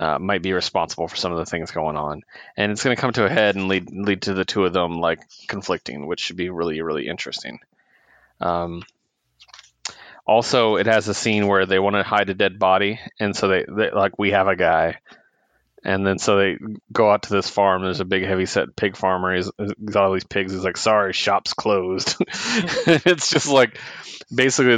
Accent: American